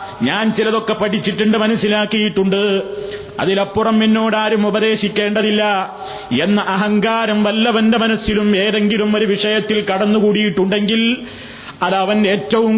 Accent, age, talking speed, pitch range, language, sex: native, 30-49, 80 wpm, 205-225 Hz, Malayalam, male